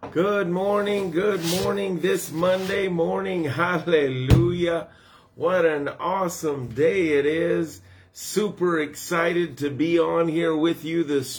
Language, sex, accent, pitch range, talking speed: English, male, American, 150-205 Hz, 120 wpm